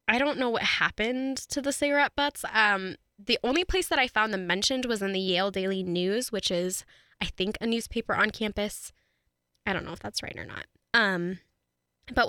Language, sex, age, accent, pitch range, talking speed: English, female, 10-29, American, 185-235 Hz, 205 wpm